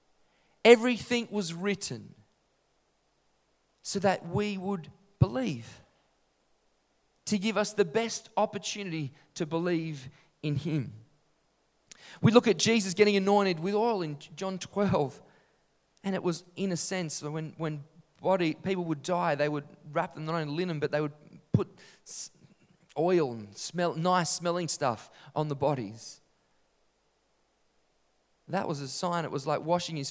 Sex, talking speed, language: male, 140 wpm, English